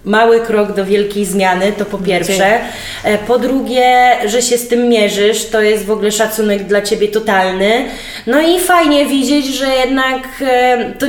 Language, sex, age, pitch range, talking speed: Polish, female, 20-39, 205-245 Hz, 160 wpm